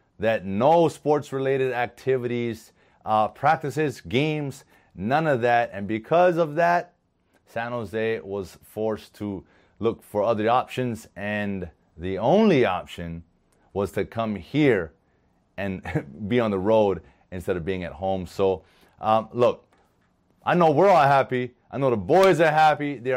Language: English